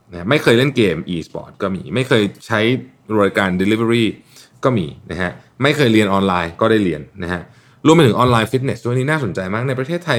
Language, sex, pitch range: Thai, male, 100-140 Hz